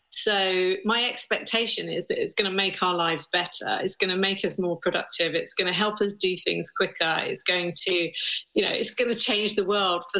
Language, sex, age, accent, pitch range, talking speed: English, female, 40-59, British, 175-210 Hz, 230 wpm